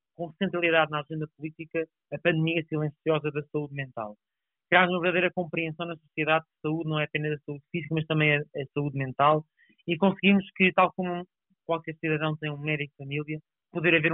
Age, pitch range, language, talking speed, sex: 30-49, 150-175 Hz, Portuguese, 185 wpm, male